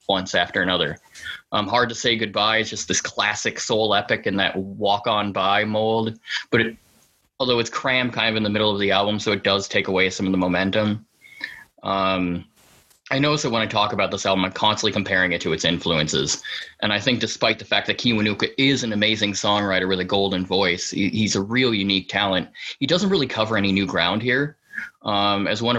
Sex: male